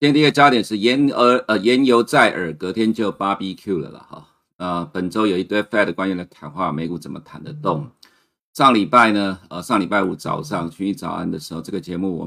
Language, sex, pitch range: Chinese, male, 85-110 Hz